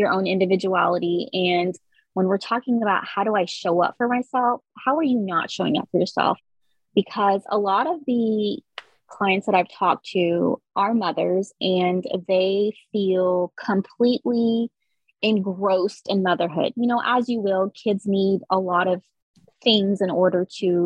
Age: 20-39